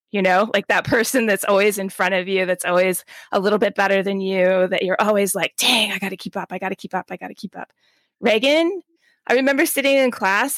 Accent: American